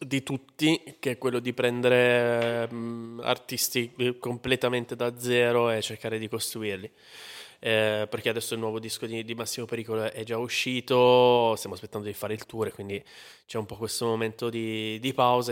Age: 20-39